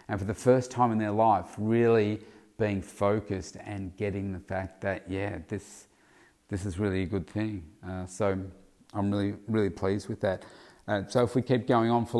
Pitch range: 95-110 Hz